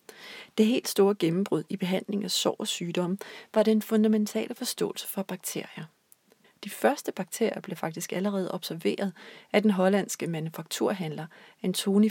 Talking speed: 140 wpm